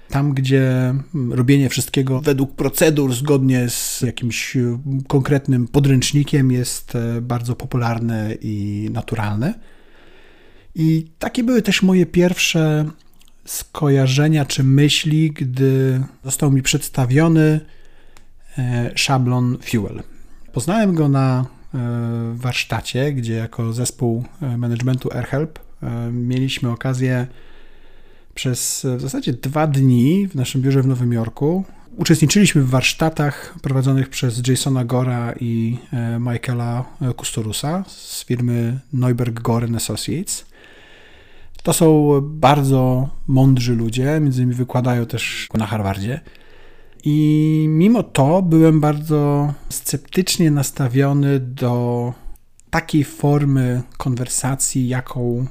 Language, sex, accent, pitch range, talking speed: Polish, male, native, 120-150 Hz, 100 wpm